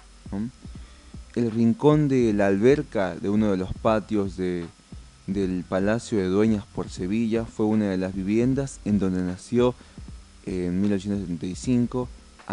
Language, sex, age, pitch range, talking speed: Spanish, male, 20-39, 95-120 Hz, 140 wpm